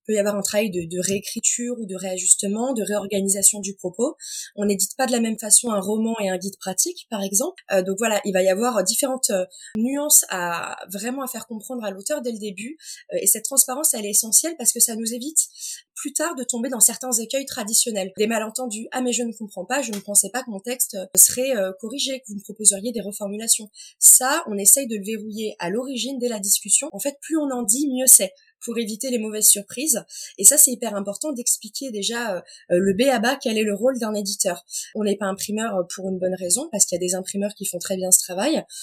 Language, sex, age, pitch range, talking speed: French, female, 20-39, 200-255 Hz, 245 wpm